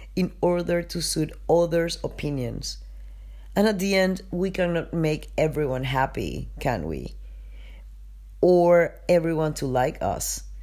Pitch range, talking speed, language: 105-160 Hz, 125 wpm, English